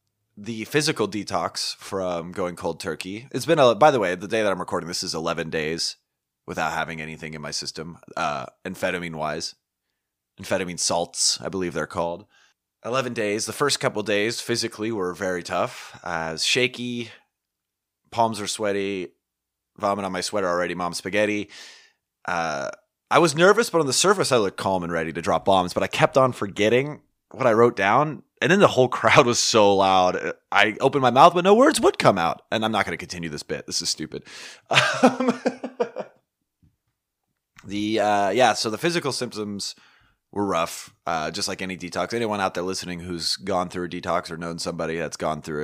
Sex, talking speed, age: male, 190 wpm, 30-49